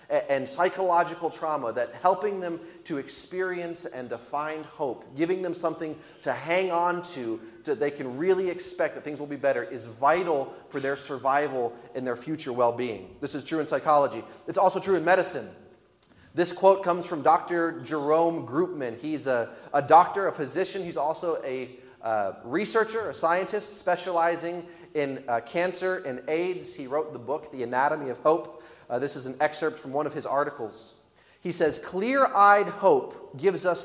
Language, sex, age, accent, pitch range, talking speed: English, male, 30-49, American, 145-185 Hz, 175 wpm